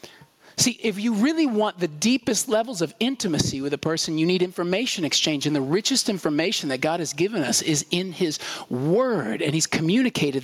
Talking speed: 190 wpm